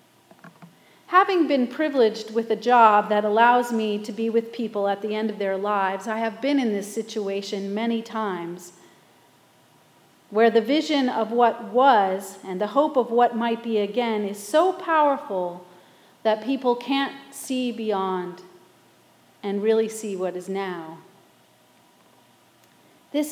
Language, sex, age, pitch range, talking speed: English, female, 40-59, 205-275 Hz, 145 wpm